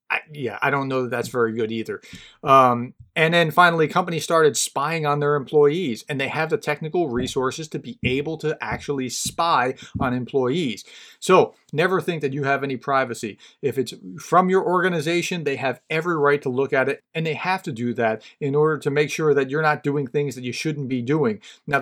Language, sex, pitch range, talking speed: English, male, 135-175 Hz, 210 wpm